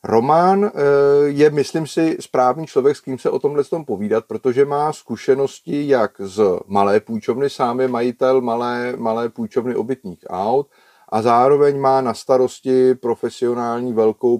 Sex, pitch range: male, 110-145 Hz